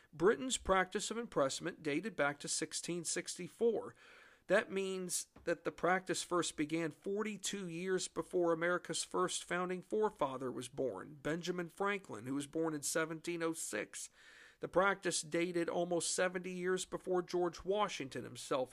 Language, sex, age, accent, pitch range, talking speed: English, male, 50-69, American, 150-185 Hz, 130 wpm